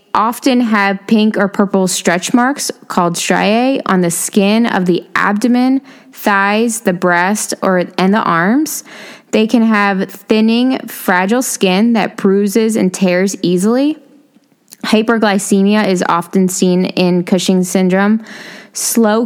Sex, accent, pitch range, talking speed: female, American, 185-220 Hz, 130 wpm